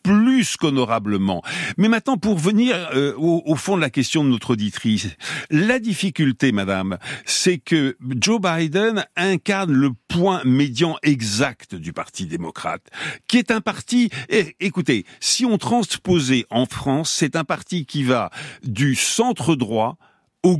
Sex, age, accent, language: male, 60-79, French, French